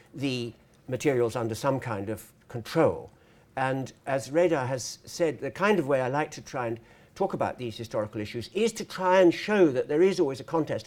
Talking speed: 205 wpm